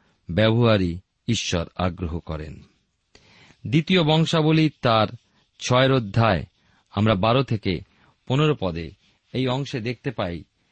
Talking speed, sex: 100 wpm, male